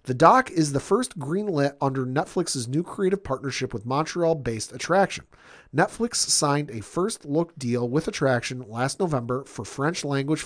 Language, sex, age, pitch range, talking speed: English, male, 40-59, 130-175 Hz, 160 wpm